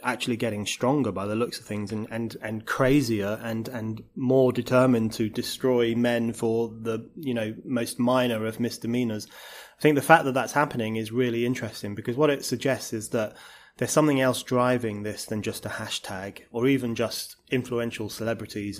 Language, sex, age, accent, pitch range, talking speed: English, male, 30-49, British, 110-125 Hz, 180 wpm